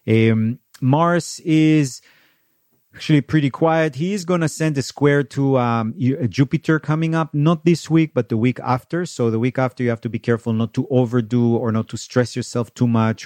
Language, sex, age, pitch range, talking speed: English, male, 40-59, 110-150 Hz, 200 wpm